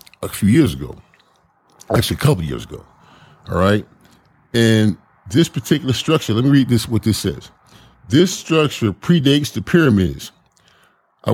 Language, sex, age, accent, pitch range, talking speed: English, male, 40-59, American, 95-125 Hz, 155 wpm